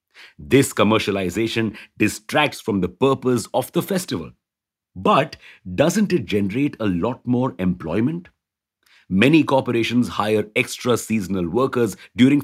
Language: English